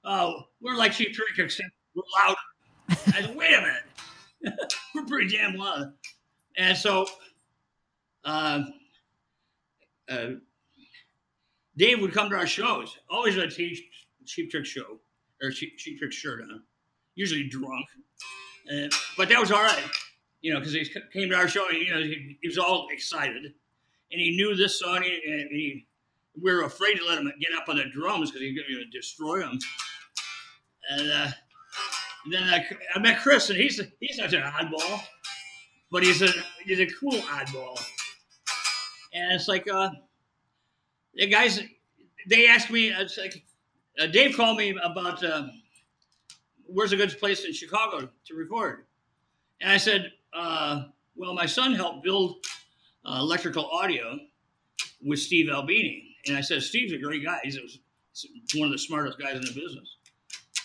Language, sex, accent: English, male, American